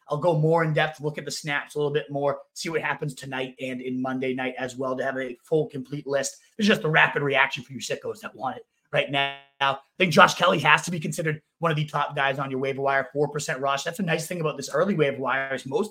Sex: male